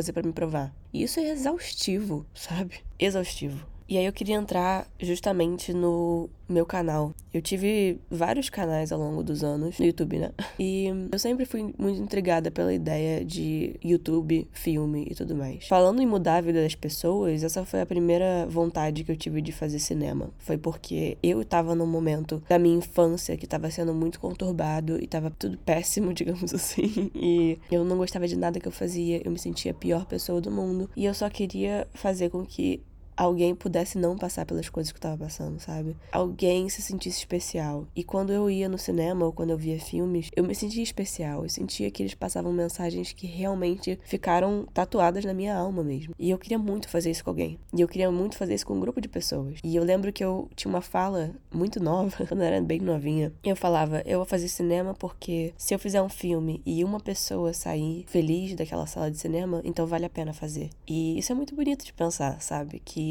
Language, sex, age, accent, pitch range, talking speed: Portuguese, female, 10-29, Brazilian, 160-185 Hz, 210 wpm